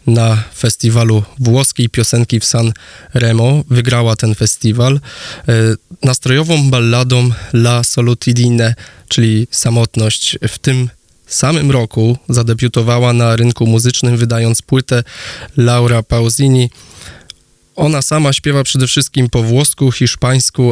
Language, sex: Polish, male